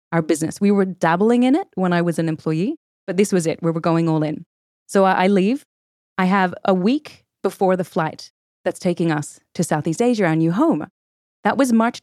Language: English